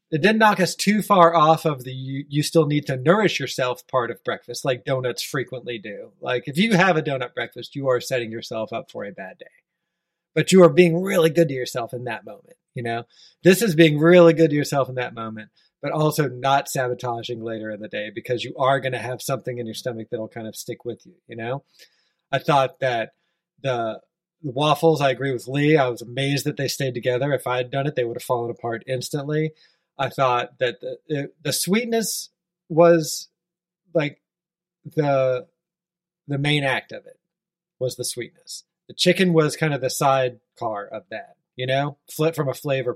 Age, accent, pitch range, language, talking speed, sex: 20-39, American, 130-170 Hz, English, 210 wpm, male